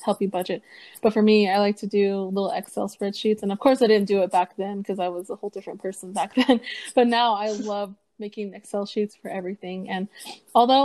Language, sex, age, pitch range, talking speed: English, female, 20-39, 195-215 Hz, 230 wpm